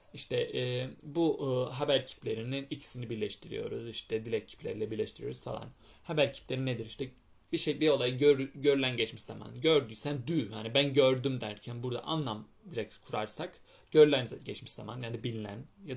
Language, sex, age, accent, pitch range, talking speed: English, male, 30-49, Turkish, 110-150 Hz, 155 wpm